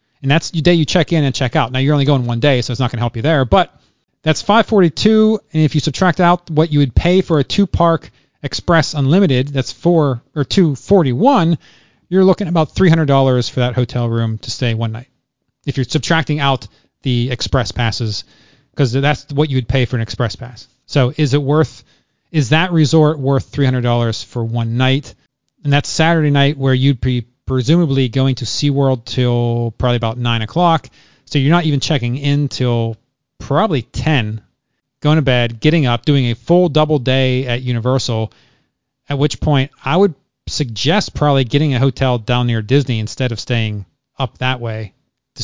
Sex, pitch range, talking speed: male, 120-155 Hz, 190 wpm